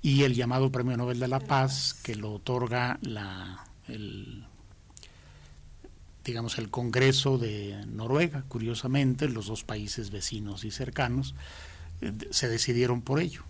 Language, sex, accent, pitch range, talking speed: Spanish, male, Mexican, 100-125 Hz, 125 wpm